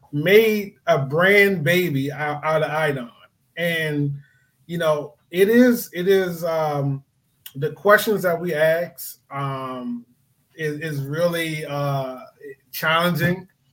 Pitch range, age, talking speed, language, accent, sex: 130-155 Hz, 20-39, 115 wpm, English, American, male